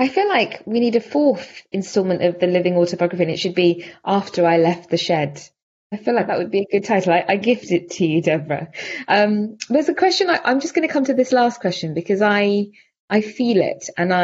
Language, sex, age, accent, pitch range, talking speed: English, female, 20-39, British, 160-200 Hz, 235 wpm